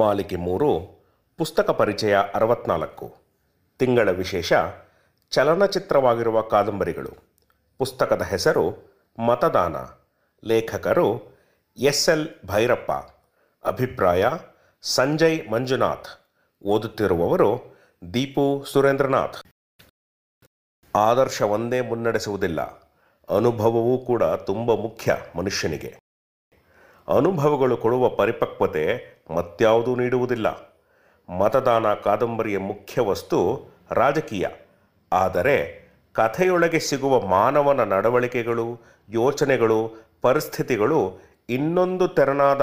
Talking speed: 65 wpm